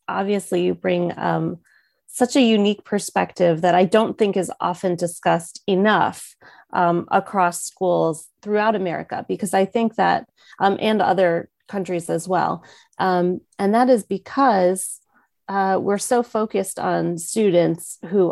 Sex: female